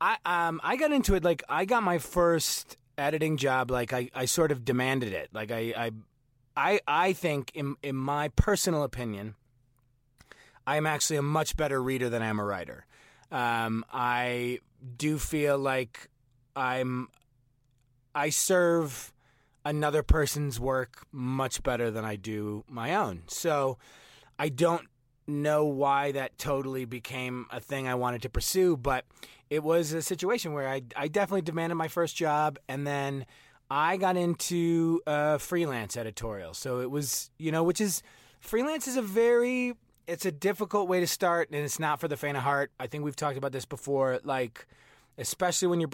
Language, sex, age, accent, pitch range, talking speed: English, male, 30-49, American, 125-160 Hz, 170 wpm